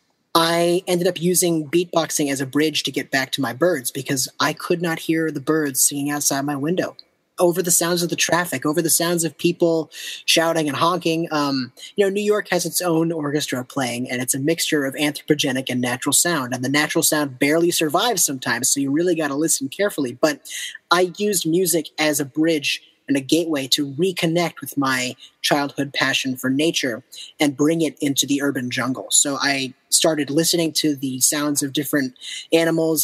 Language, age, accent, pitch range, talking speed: English, 30-49, American, 140-170 Hz, 195 wpm